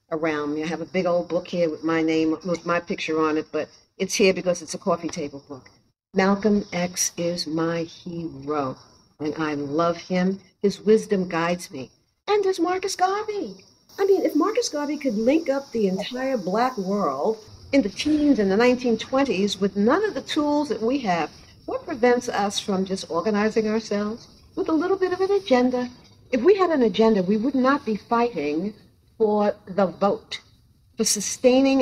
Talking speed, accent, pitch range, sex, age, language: 185 wpm, American, 180-260 Hz, female, 50-69, English